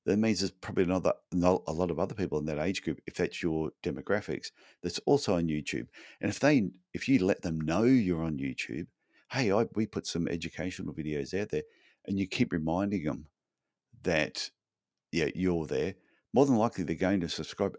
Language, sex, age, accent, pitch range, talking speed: English, male, 50-69, Australian, 80-95 Hz, 195 wpm